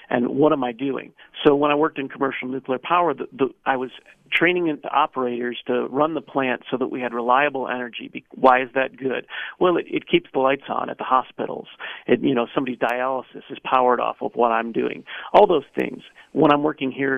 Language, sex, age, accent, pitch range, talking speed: English, male, 40-59, American, 125-145 Hz, 210 wpm